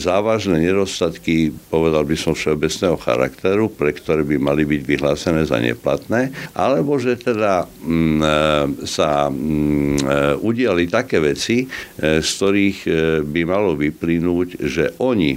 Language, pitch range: Slovak, 70-85 Hz